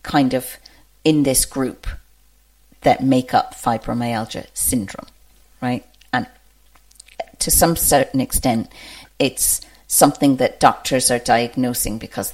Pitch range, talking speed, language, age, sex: 125-150 Hz, 110 wpm, English, 50-69, female